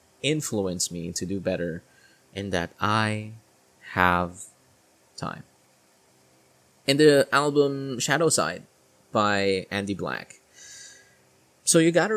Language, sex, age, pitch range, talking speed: English, male, 20-39, 85-130 Hz, 105 wpm